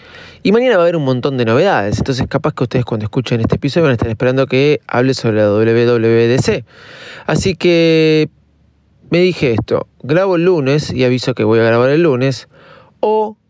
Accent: Argentinian